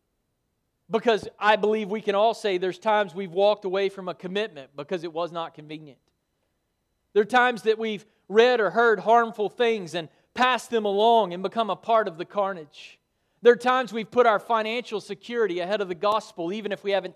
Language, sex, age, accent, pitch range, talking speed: English, male, 40-59, American, 190-250 Hz, 200 wpm